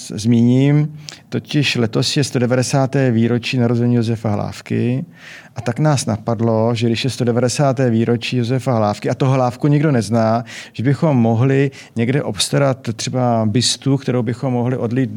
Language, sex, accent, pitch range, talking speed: Czech, male, native, 115-130 Hz, 140 wpm